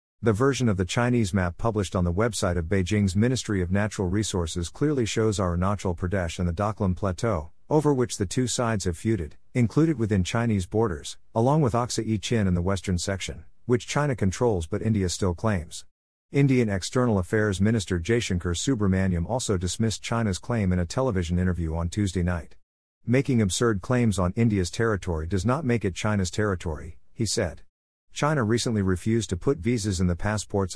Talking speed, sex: 175 wpm, male